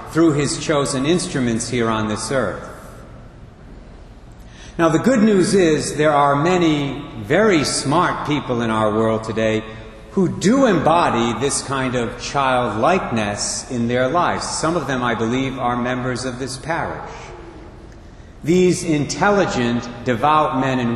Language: English